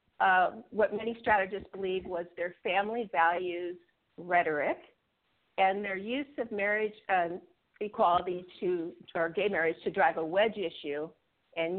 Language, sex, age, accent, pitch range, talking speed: English, female, 50-69, American, 180-245 Hz, 135 wpm